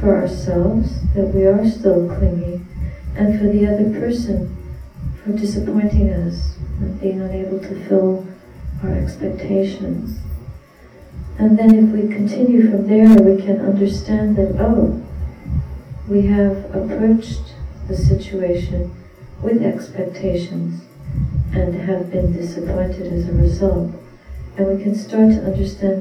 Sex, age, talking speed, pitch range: female, 40-59, 125 wpm, 170-205 Hz